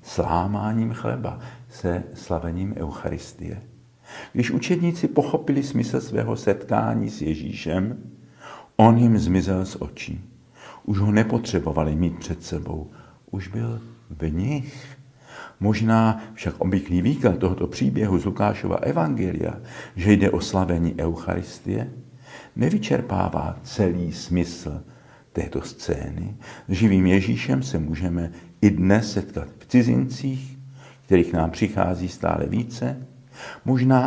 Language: Czech